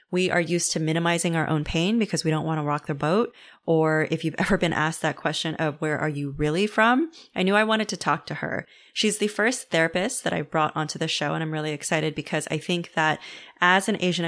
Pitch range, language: 155-190 Hz, English